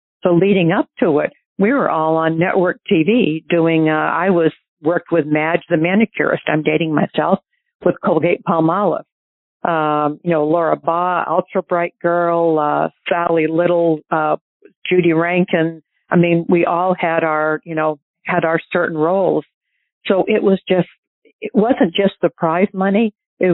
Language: English